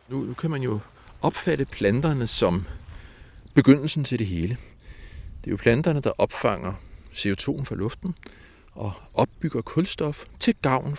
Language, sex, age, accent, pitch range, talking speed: Danish, male, 60-79, native, 100-150 Hz, 140 wpm